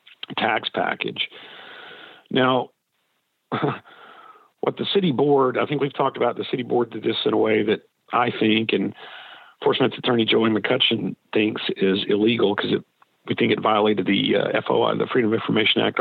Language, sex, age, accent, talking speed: English, male, 50-69, American, 165 wpm